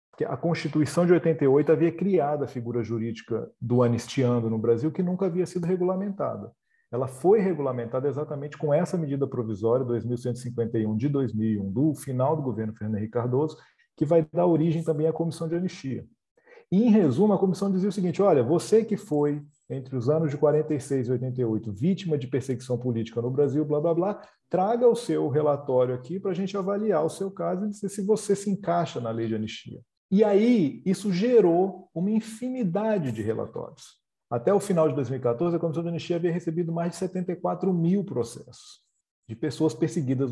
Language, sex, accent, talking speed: Portuguese, male, Brazilian, 180 wpm